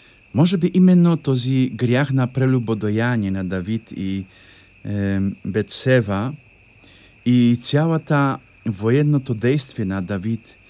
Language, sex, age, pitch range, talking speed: Polish, male, 50-69, 100-135 Hz, 105 wpm